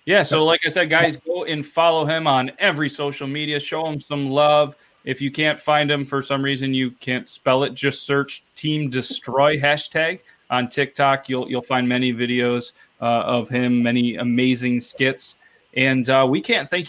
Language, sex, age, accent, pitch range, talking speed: English, male, 30-49, American, 130-170 Hz, 190 wpm